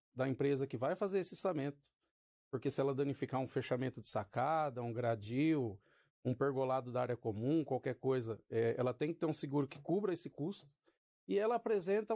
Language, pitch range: Portuguese, 140-190 Hz